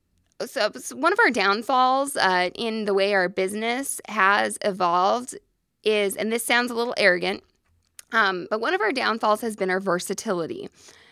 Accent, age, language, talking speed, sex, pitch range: American, 20-39, English, 165 wpm, female, 185-240 Hz